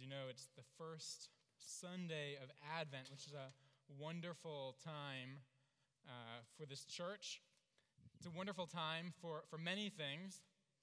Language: English